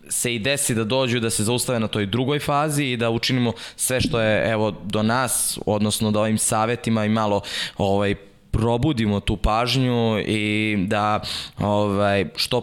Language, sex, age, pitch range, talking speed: Slovak, male, 20-39, 105-125 Hz, 165 wpm